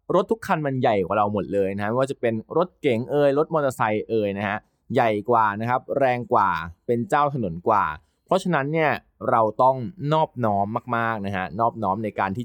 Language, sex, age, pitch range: Thai, male, 20-39, 100-145 Hz